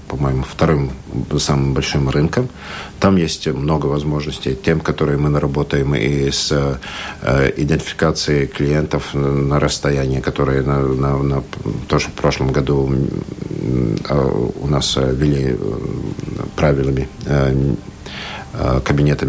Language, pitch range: Russian, 70-95 Hz